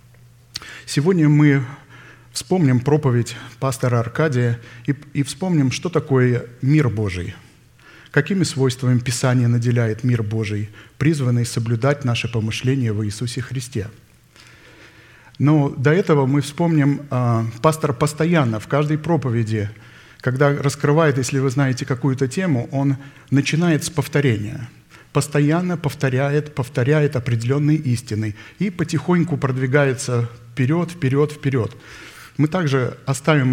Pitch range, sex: 120-150 Hz, male